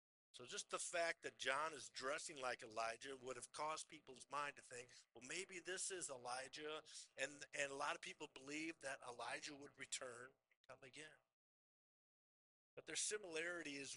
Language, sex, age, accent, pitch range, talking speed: English, male, 50-69, American, 120-160 Hz, 170 wpm